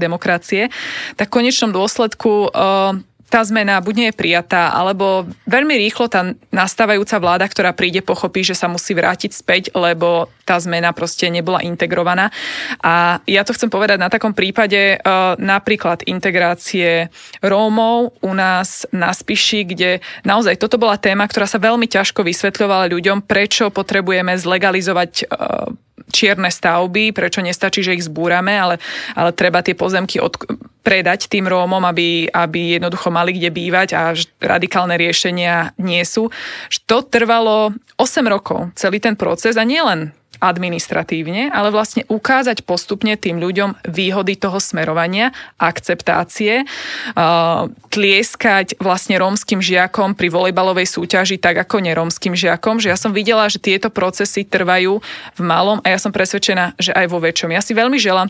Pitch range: 180-215 Hz